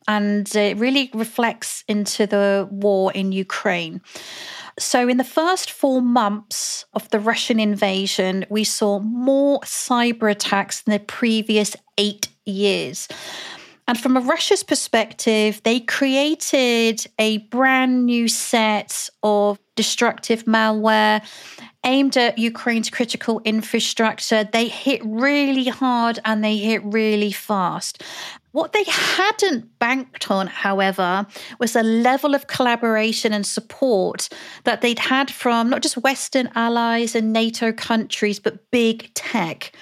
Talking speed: 125 wpm